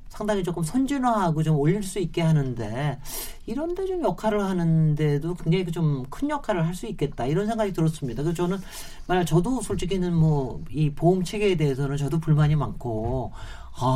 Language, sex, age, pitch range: Korean, male, 40-59, 145-200 Hz